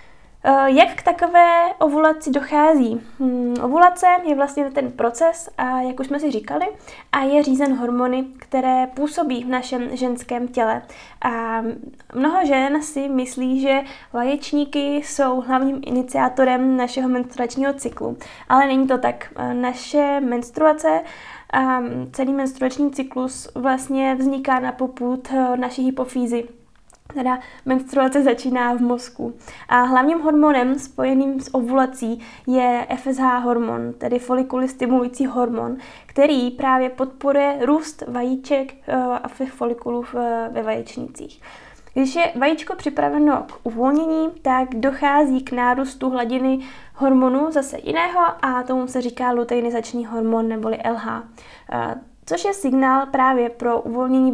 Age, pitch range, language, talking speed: 10-29, 245-275 Hz, Czech, 120 wpm